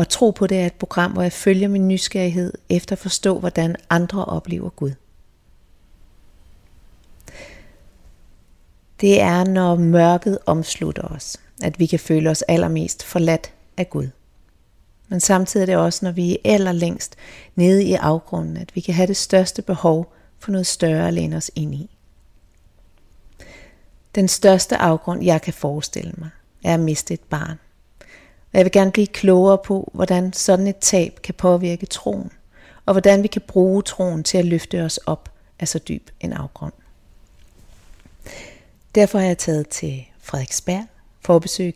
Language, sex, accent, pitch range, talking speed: Danish, female, native, 130-190 Hz, 160 wpm